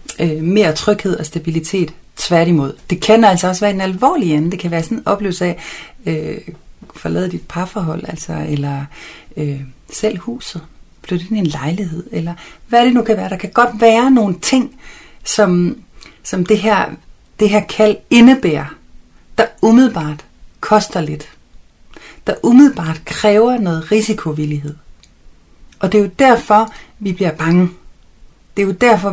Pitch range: 155-215 Hz